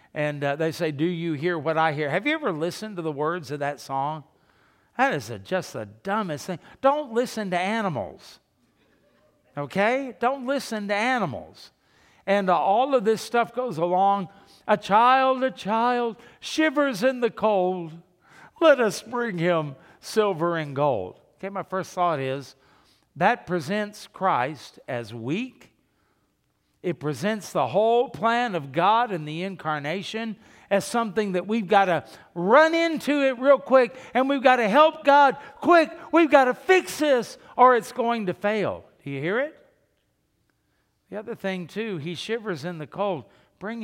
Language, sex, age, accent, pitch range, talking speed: English, male, 50-69, American, 160-240 Hz, 165 wpm